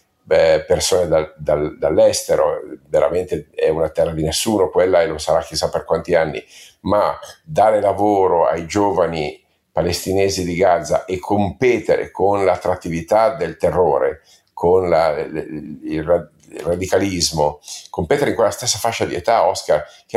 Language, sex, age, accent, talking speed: Italian, male, 50-69, native, 145 wpm